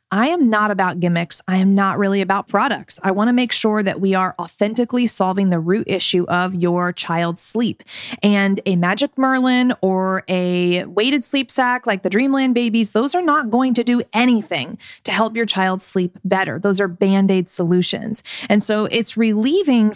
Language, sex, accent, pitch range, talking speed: English, female, American, 185-235 Hz, 185 wpm